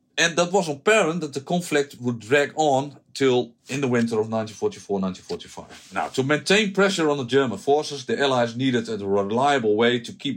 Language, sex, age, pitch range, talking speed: English, male, 50-69, 115-145 Hz, 185 wpm